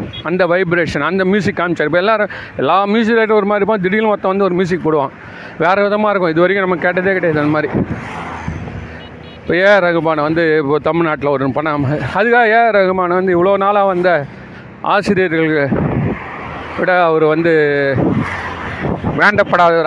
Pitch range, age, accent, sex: 170-240 Hz, 40-59, native, male